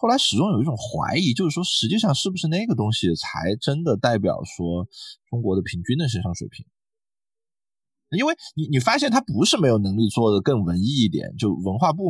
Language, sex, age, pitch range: Chinese, male, 20-39, 105-165 Hz